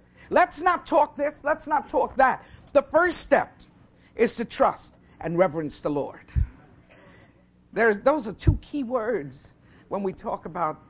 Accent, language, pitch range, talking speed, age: American, English, 160-250 Hz, 150 wpm, 50-69